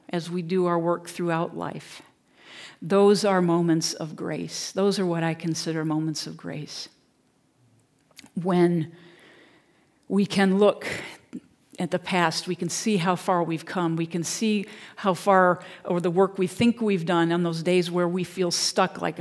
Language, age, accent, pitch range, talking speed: English, 50-69, American, 170-195 Hz, 170 wpm